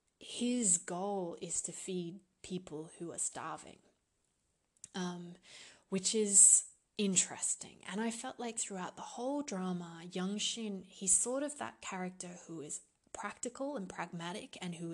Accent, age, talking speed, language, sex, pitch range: Australian, 20-39, 140 wpm, English, female, 175-220 Hz